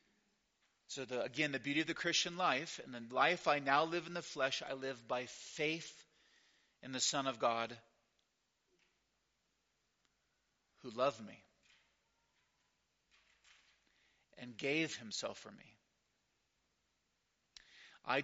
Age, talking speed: 40-59, 115 wpm